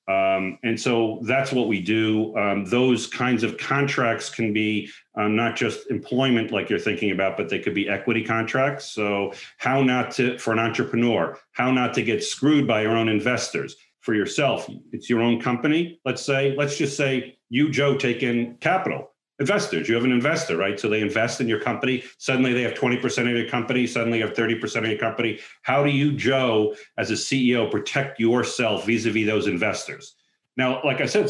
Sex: male